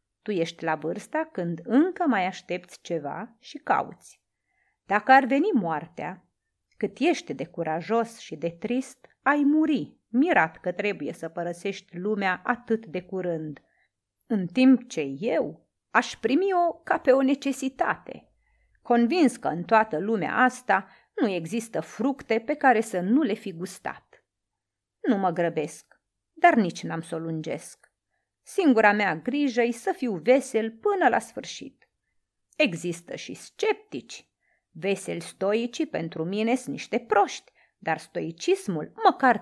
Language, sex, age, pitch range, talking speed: Romanian, female, 30-49, 175-260 Hz, 135 wpm